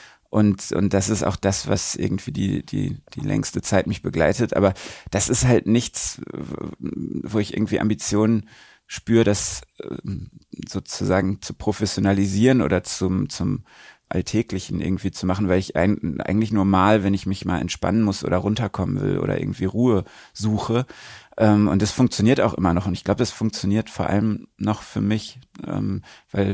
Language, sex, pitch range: German, male, 95-110 Hz